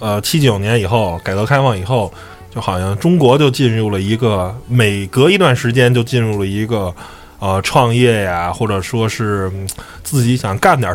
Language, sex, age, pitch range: Chinese, male, 20-39, 95-135 Hz